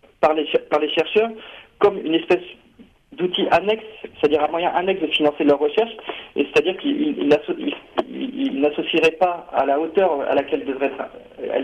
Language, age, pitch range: French, 40-59, 140-195 Hz